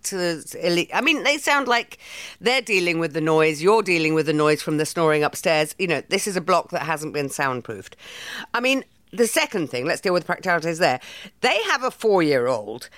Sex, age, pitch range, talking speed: female, 50-69, 150-220 Hz, 215 wpm